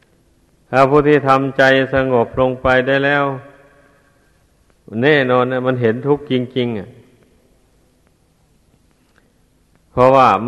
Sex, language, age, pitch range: male, Thai, 60-79, 115-135 Hz